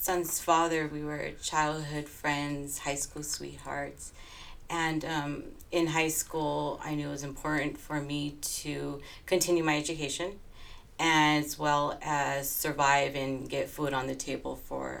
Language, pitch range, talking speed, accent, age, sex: English, 140-175 Hz, 145 wpm, American, 30-49, female